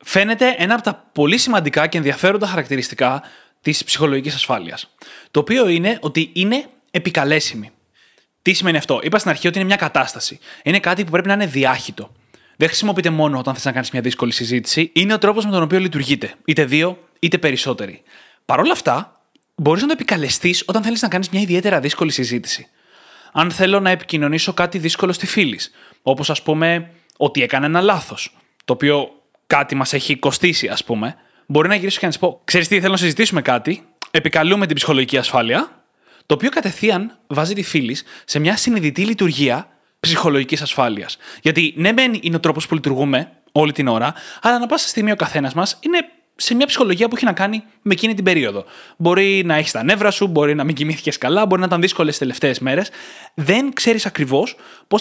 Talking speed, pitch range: 190 wpm, 150-200 Hz